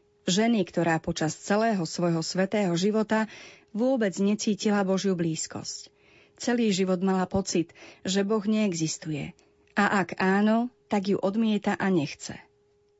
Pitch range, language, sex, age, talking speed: 165-215 Hz, Slovak, female, 40-59, 120 wpm